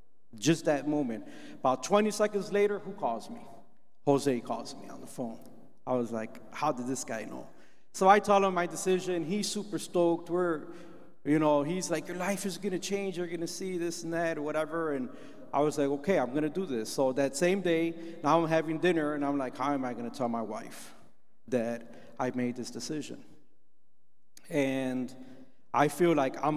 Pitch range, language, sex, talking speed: 130-175 Hz, English, male, 210 wpm